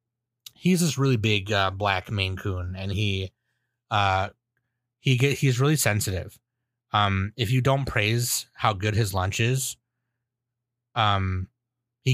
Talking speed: 140 wpm